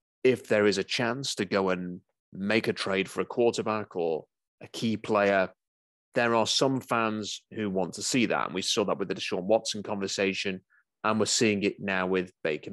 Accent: British